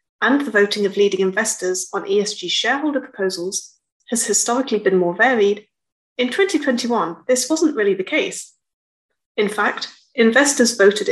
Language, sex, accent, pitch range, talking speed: English, female, British, 185-280 Hz, 140 wpm